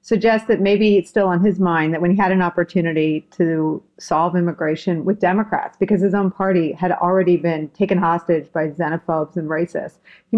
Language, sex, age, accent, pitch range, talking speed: English, female, 40-59, American, 175-220 Hz, 185 wpm